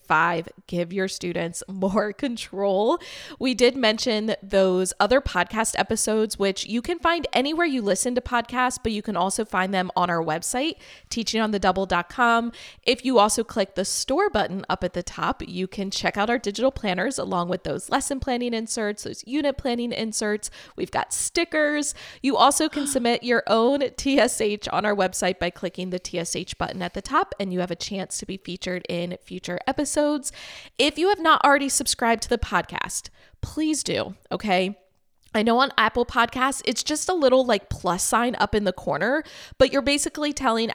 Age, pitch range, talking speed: 20-39, 195-265 Hz, 185 wpm